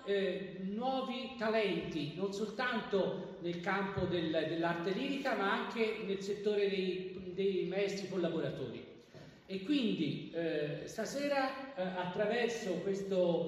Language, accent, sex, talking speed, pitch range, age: Italian, native, male, 110 wpm, 185-235 Hz, 40-59